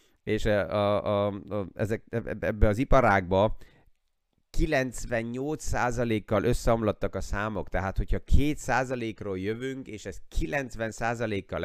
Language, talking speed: Hungarian, 75 wpm